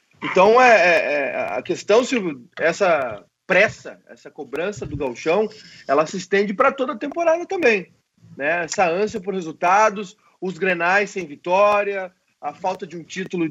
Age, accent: 30-49, Brazilian